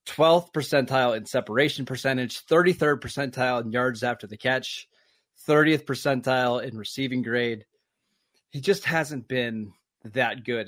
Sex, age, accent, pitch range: male, 20-39, American, 125-155 Hz